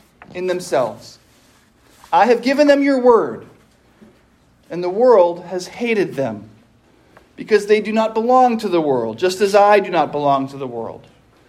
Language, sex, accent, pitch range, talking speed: English, male, American, 165-225 Hz, 160 wpm